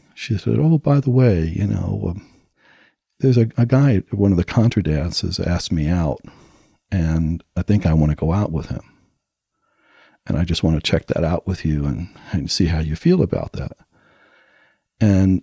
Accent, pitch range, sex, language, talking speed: American, 85-115 Hz, male, English, 195 wpm